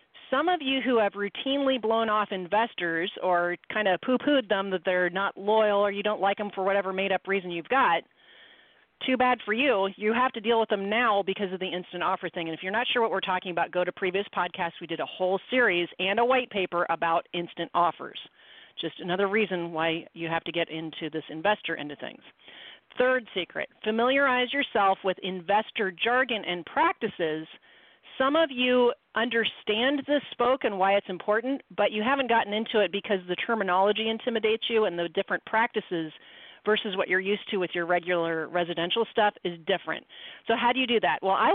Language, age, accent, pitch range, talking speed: English, 40-59, American, 180-230 Hz, 200 wpm